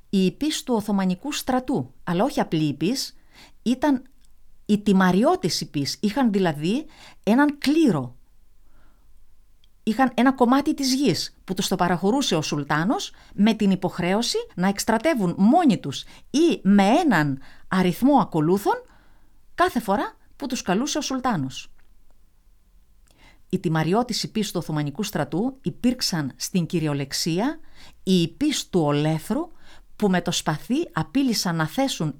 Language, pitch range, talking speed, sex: Greek, 160-255 Hz, 125 wpm, female